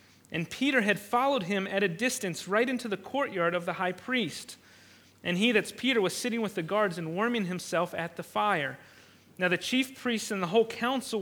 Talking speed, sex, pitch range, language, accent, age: 210 wpm, male, 180-235 Hz, English, American, 30-49